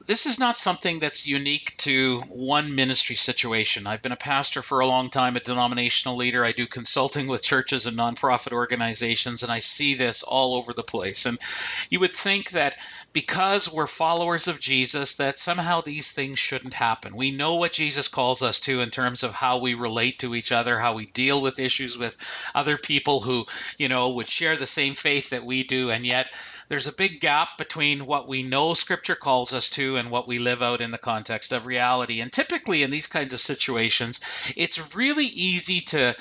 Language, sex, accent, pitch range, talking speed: English, male, American, 125-160 Hz, 205 wpm